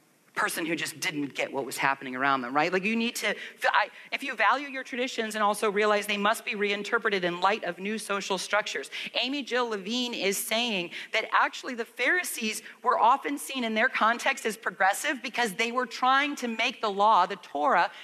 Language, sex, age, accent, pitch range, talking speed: English, female, 40-59, American, 190-245 Hz, 200 wpm